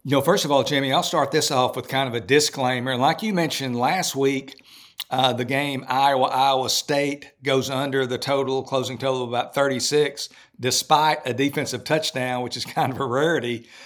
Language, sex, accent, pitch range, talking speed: English, male, American, 125-145 Hz, 190 wpm